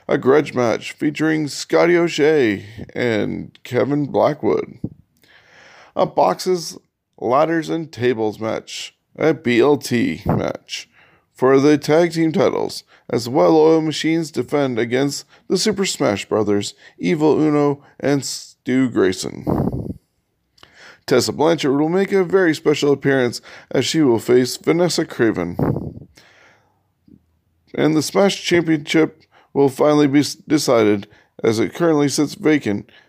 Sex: male